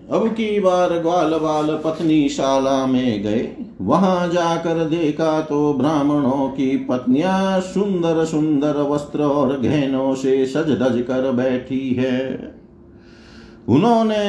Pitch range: 140-185 Hz